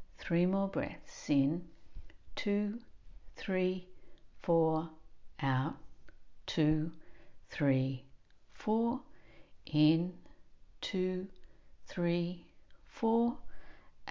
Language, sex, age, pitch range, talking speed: English, female, 60-79, 150-200 Hz, 55 wpm